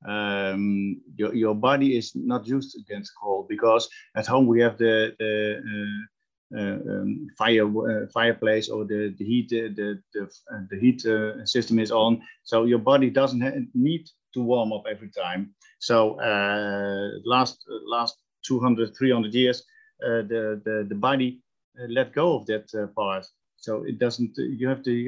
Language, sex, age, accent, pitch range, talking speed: English, male, 50-69, Dutch, 110-135 Hz, 175 wpm